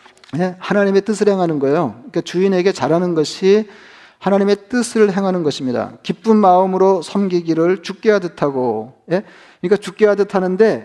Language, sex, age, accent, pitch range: Korean, male, 40-59, native, 155-195 Hz